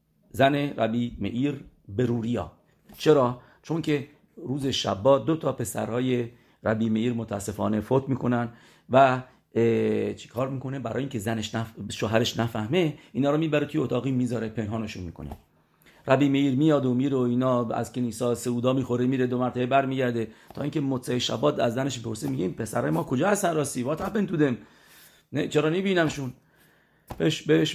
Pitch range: 110-140 Hz